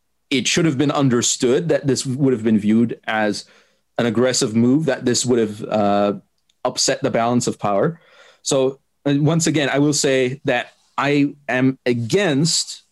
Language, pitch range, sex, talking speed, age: English, 115-145 Hz, male, 165 wpm, 30-49